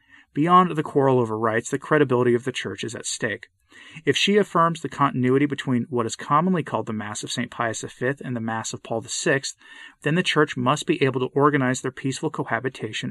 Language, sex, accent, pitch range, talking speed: English, male, American, 120-155 Hz, 210 wpm